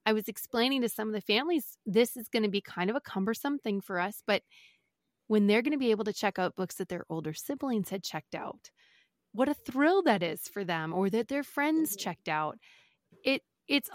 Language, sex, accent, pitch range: English, female, American, 190-235 Hz